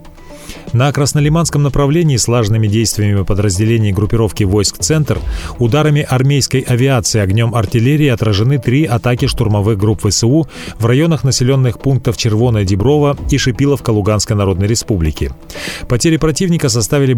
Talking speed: 120 wpm